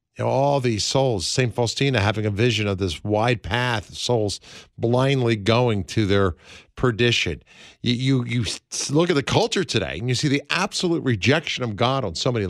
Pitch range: 105-155 Hz